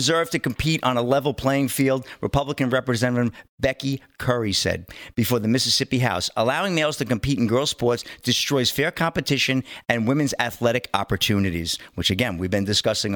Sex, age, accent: male, 50-69, American